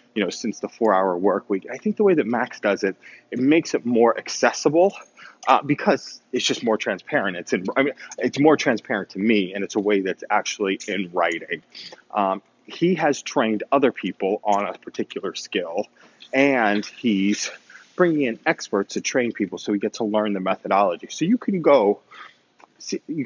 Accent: American